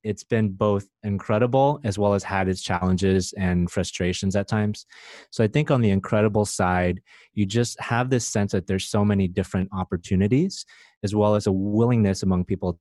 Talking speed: 185 wpm